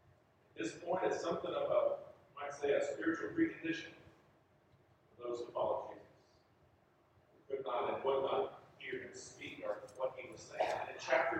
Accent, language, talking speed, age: American, English, 175 wpm, 40-59